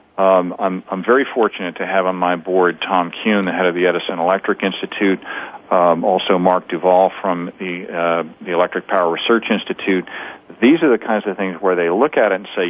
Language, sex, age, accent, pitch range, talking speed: English, male, 40-59, American, 90-100 Hz, 210 wpm